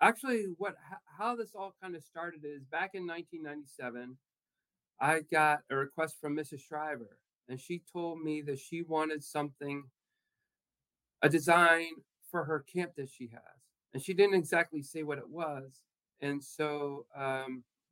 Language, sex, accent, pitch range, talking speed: English, male, American, 140-170 Hz, 155 wpm